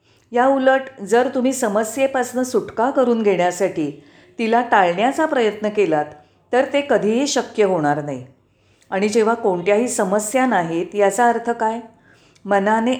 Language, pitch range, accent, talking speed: Marathi, 180-235 Hz, native, 125 wpm